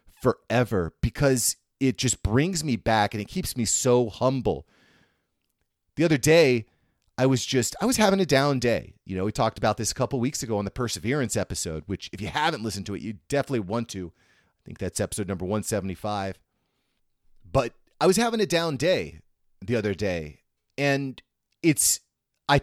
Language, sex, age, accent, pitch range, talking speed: English, male, 30-49, American, 105-140 Hz, 185 wpm